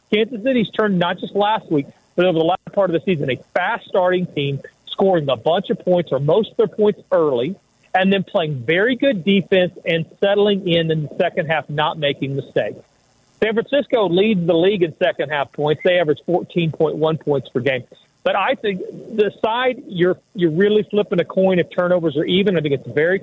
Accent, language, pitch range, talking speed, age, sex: American, English, 165-210 Hz, 200 wpm, 40-59, male